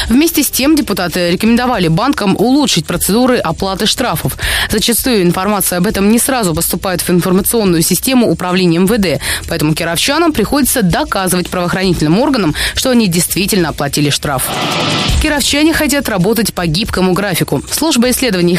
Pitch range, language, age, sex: 175-245 Hz, Russian, 20-39, female